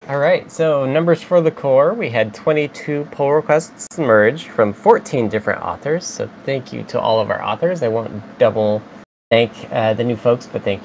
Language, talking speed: English, 195 wpm